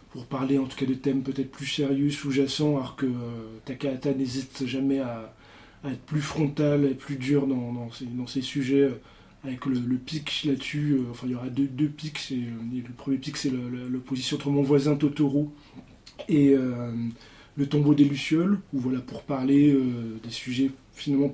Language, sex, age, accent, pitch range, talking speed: French, male, 20-39, French, 130-145 Hz, 190 wpm